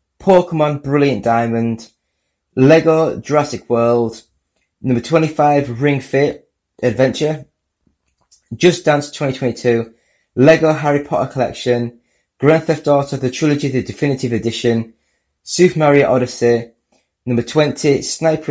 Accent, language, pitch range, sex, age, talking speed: British, English, 115-150 Hz, male, 20-39, 105 wpm